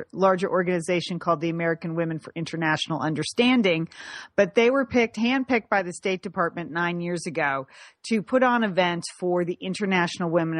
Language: English